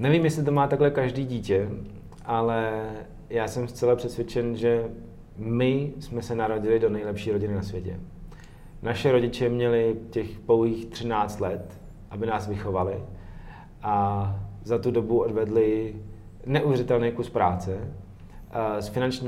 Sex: male